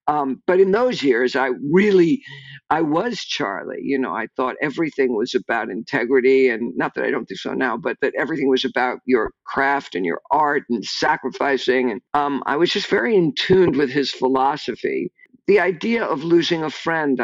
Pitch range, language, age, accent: 130-200 Hz, English, 50-69, American